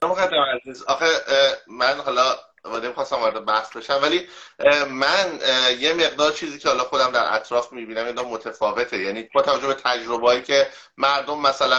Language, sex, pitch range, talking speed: English, male, 125-155 Hz, 165 wpm